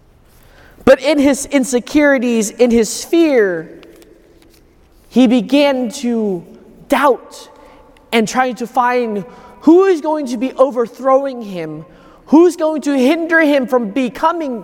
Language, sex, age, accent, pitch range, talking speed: English, male, 20-39, American, 220-285 Hz, 120 wpm